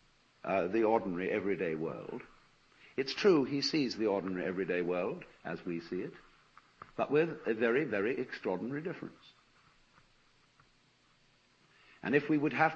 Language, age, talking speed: English, 60-79, 135 wpm